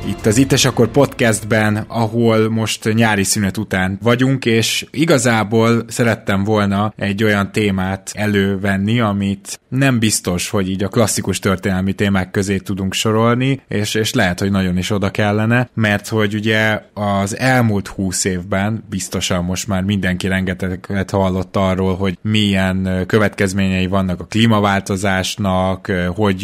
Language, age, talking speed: Hungarian, 20-39, 140 wpm